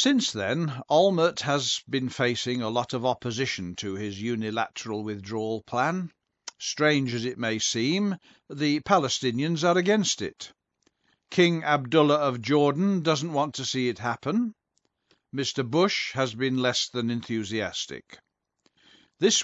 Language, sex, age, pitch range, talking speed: English, male, 50-69, 115-155 Hz, 135 wpm